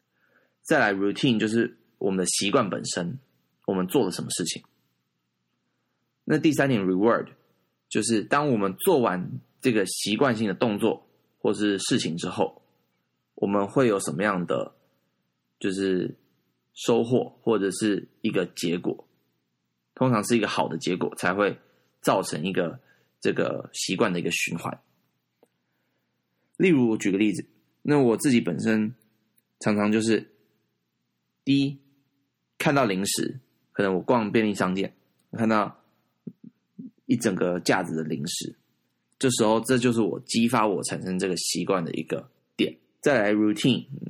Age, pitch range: 20-39, 95-115 Hz